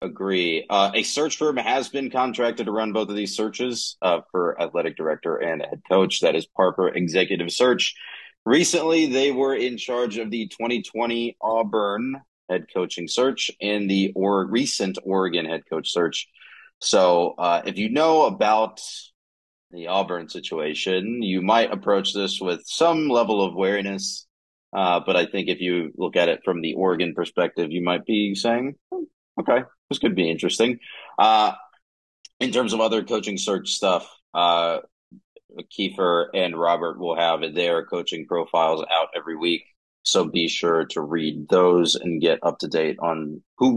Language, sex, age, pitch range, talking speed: English, male, 30-49, 85-120 Hz, 165 wpm